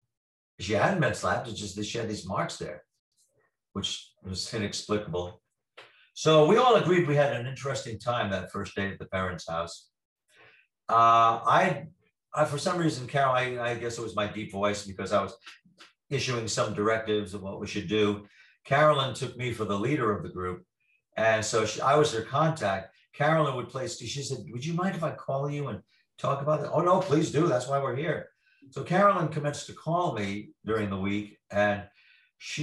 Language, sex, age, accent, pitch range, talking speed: English, male, 50-69, American, 105-140 Hz, 195 wpm